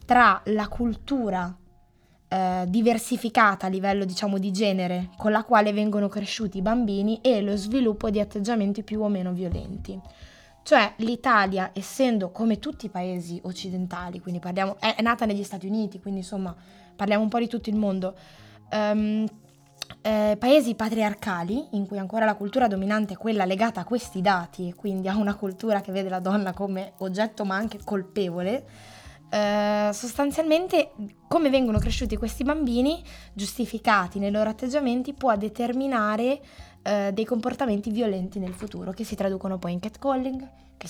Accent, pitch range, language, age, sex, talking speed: native, 185-230 Hz, Italian, 20-39, female, 155 wpm